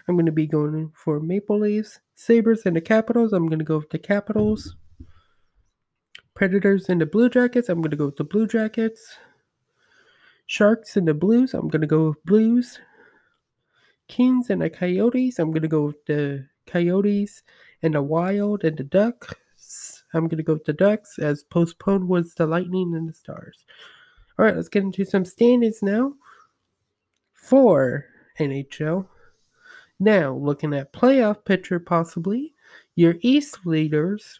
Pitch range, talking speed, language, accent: 160-225 Hz, 160 wpm, English, American